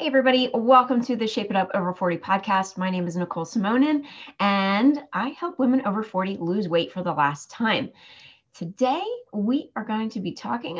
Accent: American